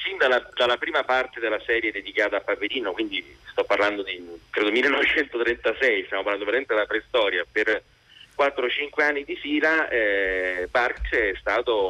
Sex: male